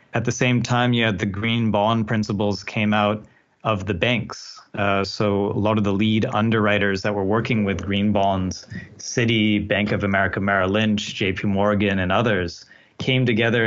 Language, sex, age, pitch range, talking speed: English, male, 30-49, 100-115 Hz, 180 wpm